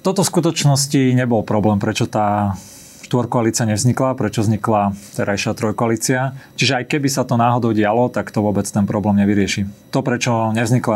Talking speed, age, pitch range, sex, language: 160 wpm, 30-49, 105-120 Hz, male, Slovak